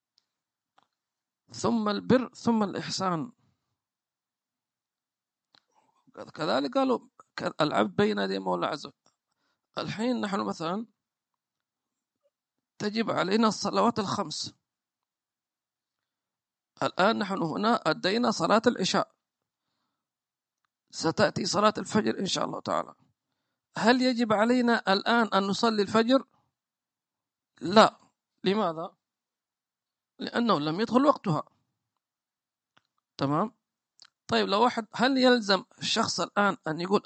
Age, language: 50-69, English